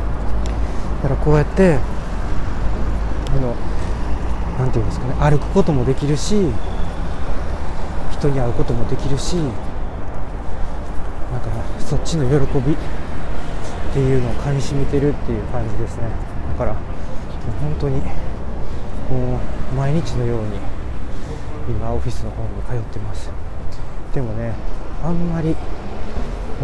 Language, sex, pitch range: Japanese, male, 95-130 Hz